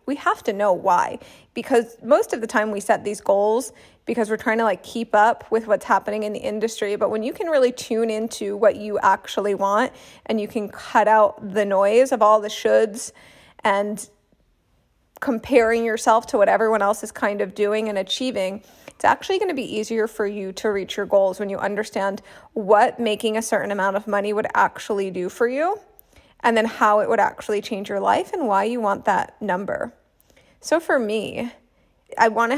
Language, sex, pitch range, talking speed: English, female, 205-240 Hz, 205 wpm